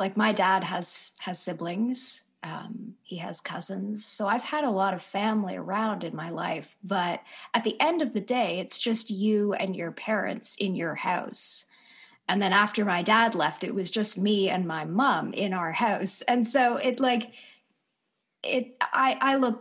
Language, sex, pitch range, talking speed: English, female, 185-230 Hz, 185 wpm